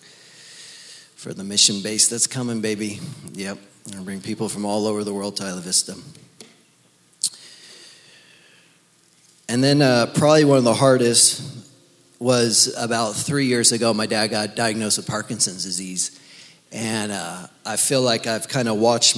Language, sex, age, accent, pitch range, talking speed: English, male, 30-49, American, 105-130 Hz, 150 wpm